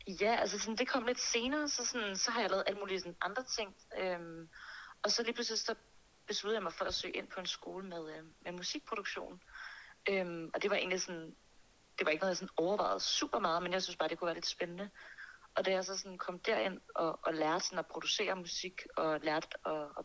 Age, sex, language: 40-59, female, Danish